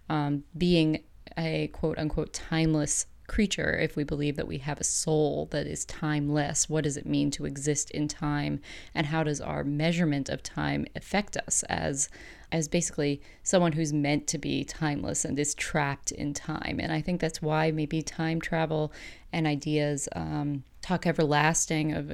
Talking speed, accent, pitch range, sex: 170 wpm, American, 145-160 Hz, female